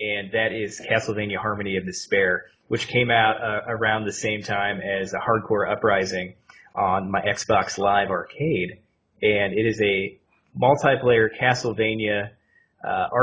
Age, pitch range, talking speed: 20-39, 100-125 Hz, 140 wpm